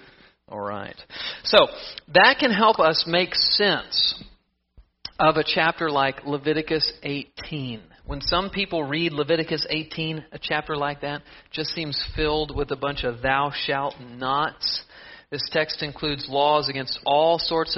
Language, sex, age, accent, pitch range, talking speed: English, male, 50-69, American, 135-160 Hz, 140 wpm